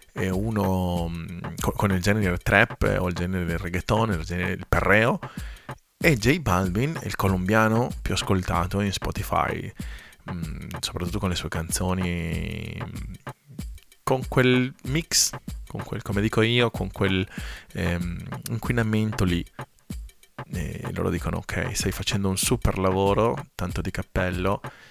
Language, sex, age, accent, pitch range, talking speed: Italian, male, 30-49, native, 90-110 Hz, 130 wpm